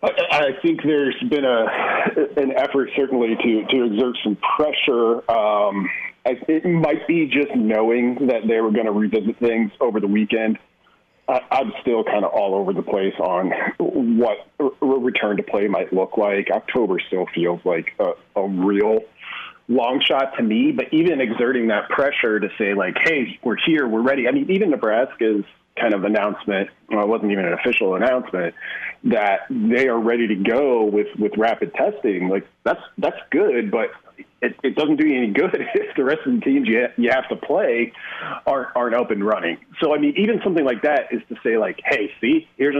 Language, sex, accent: English, male, American